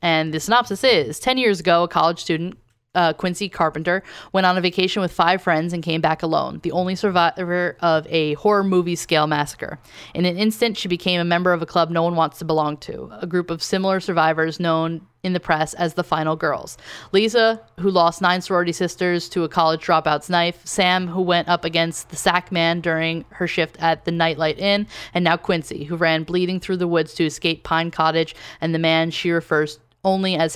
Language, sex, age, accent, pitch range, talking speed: English, female, 10-29, American, 160-185 Hz, 210 wpm